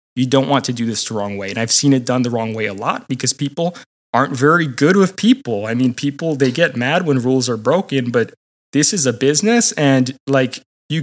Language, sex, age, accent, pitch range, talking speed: English, male, 20-39, American, 120-160 Hz, 240 wpm